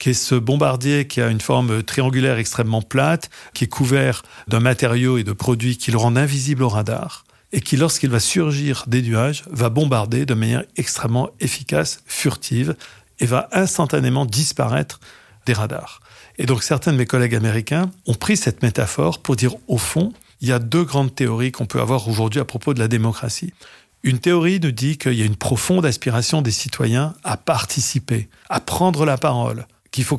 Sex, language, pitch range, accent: male, French, 120-145 Hz, French